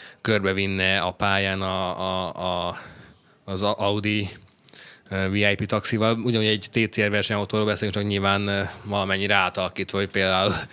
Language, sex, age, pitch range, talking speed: Hungarian, male, 20-39, 95-115 Hz, 115 wpm